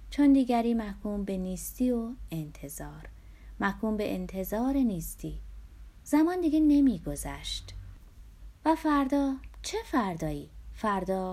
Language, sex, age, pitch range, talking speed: Persian, female, 30-49, 155-250 Hz, 100 wpm